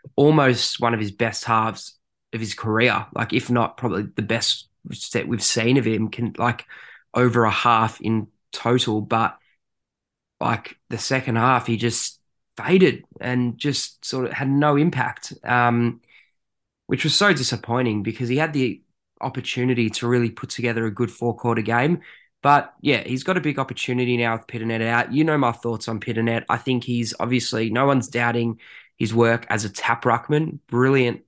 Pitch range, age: 115-130 Hz, 20-39